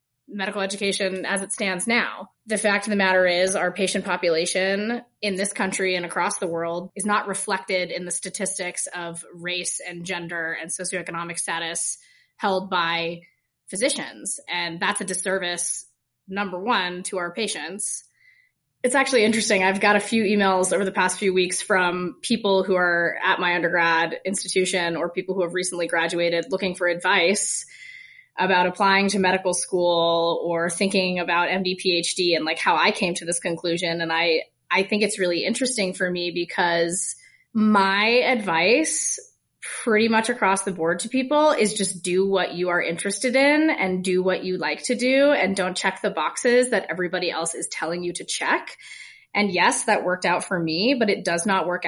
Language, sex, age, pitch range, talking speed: English, female, 20-39, 175-210 Hz, 180 wpm